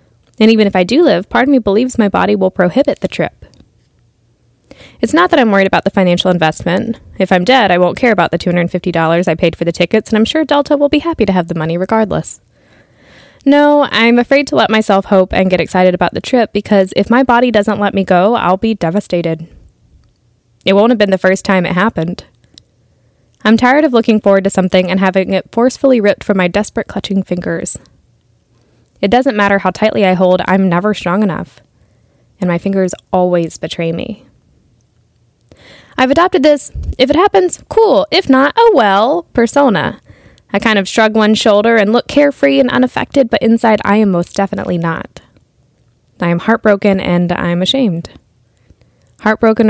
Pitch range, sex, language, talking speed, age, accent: 175-225 Hz, female, English, 185 wpm, 10-29, American